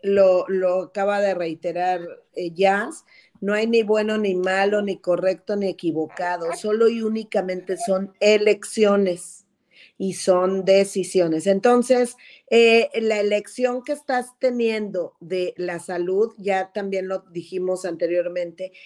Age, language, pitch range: 40-59, Spanish, 185-235 Hz